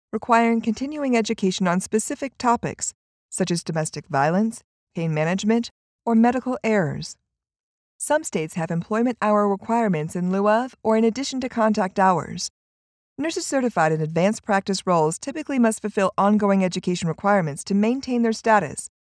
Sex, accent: female, American